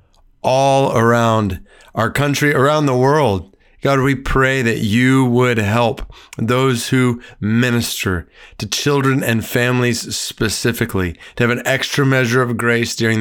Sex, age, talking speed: male, 40-59, 135 wpm